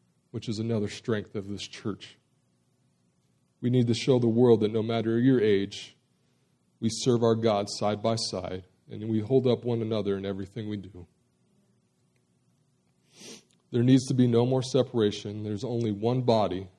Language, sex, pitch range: English, male, 95-115 Hz